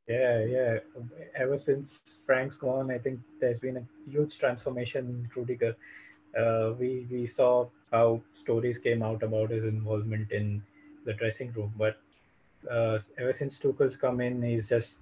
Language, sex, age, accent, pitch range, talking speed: English, male, 20-39, Indian, 115-135 Hz, 150 wpm